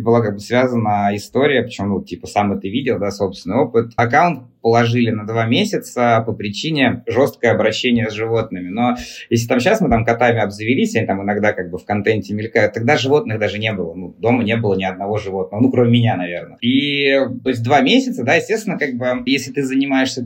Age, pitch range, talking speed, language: 20-39, 115-135 Hz, 205 wpm, Russian